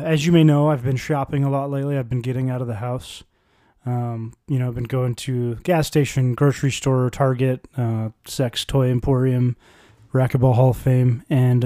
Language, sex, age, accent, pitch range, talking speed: English, male, 20-39, American, 130-155 Hz, 195 wpm